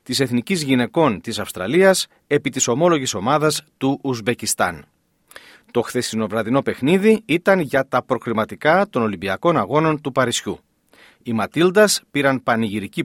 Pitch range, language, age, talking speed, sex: 115-180 Hz, Greek, 40-59, 125 wpm, male